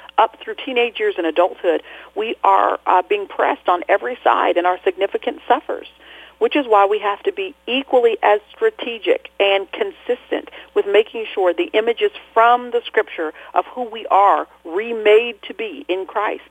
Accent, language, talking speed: American, English, 170 wpm